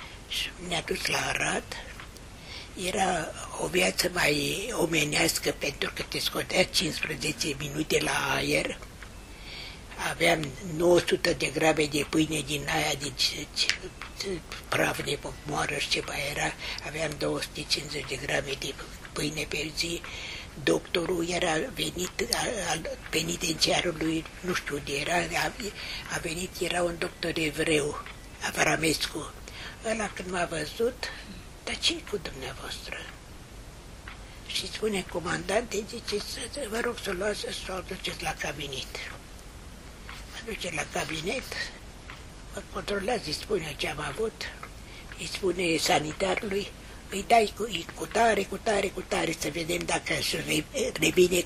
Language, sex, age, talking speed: Romanian, female, 60-79, 130 wpm